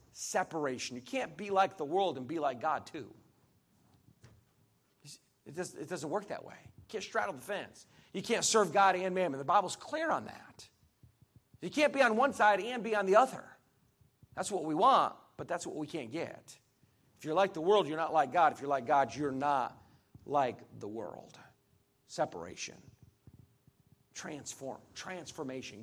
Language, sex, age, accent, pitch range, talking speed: English, male, 40-59, American, 135-185 Hz, 180 wpm